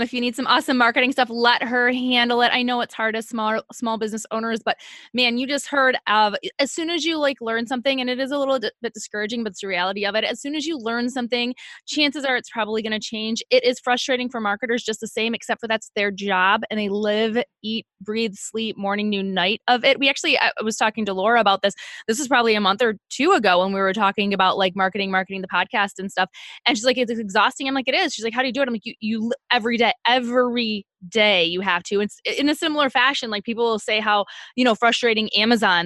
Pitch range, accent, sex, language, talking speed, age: 205-255 Hz, American, female, English, 255 wpm, 20-39